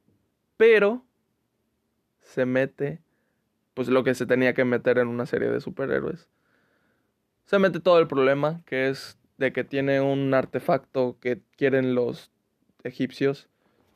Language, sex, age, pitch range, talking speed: Spanish, male, 20-39, 125-145 Hz, 135 wpm